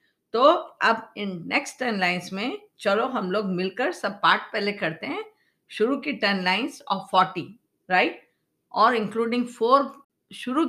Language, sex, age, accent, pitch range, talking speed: Hindi, female, 50-69, native, 185-230 Hz, 130 wpm